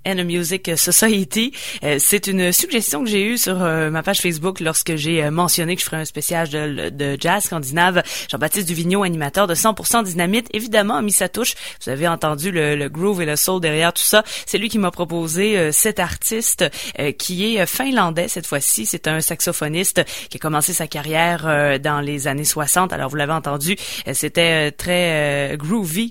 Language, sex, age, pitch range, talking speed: English, female, 30-49, 150-190 Hz, 185 wpm